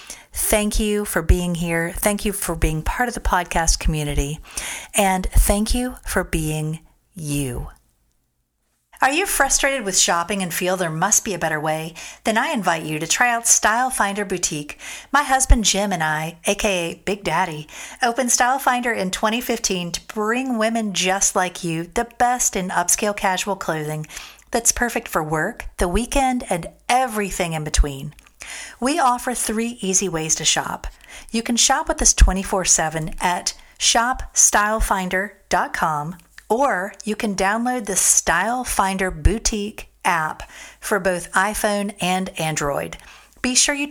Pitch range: 170-235 Hz